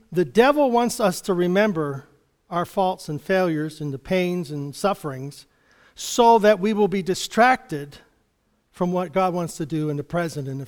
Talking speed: 180 wpm